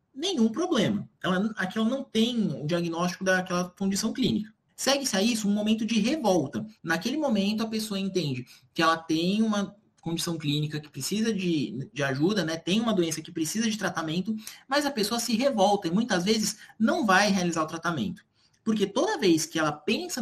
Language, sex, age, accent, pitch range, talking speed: Portuguese, male, 20-39, Brazilian, 175-225 Hz, 185 wpm